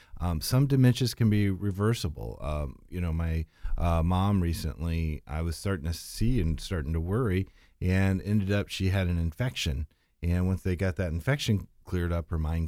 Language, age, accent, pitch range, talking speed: English, 40-59, American, 80-105 Hz, 185 wpm